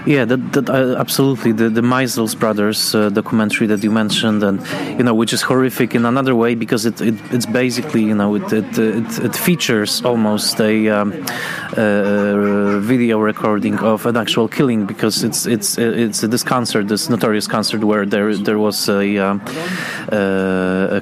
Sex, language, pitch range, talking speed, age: male, Polish, 110-130 Hz, 170 wpm, 20-39